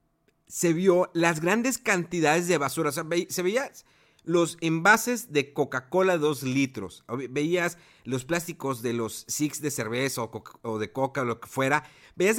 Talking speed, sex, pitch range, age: 175 wpm, male, 125-180 Hz, 50-69